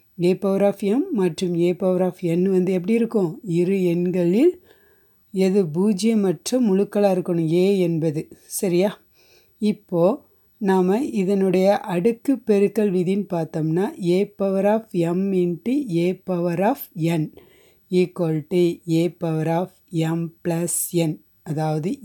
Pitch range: 170-200 Hz